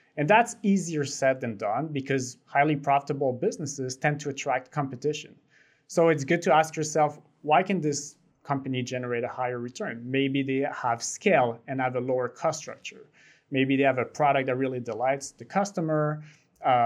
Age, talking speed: 30-49, 175 wpm